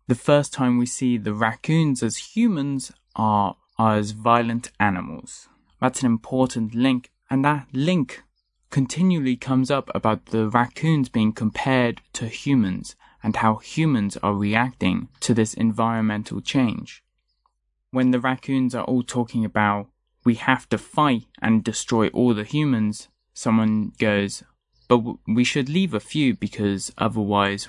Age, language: 20-39, English